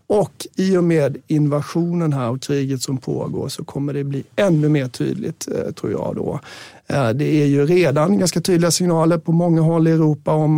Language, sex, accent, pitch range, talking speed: Swedish, male, native, 140-160 Hz, 185 wpm